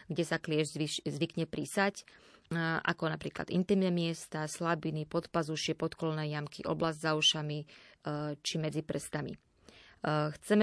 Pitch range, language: 155-175 Hz, Slovak